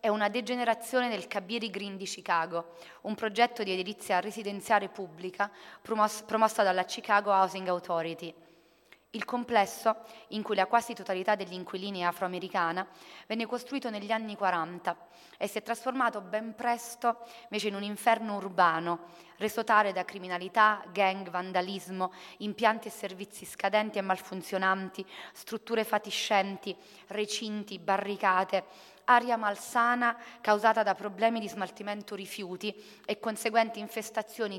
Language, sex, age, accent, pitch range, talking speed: Italian, female, 30-49, native, 180-215 Hz, 125 wpm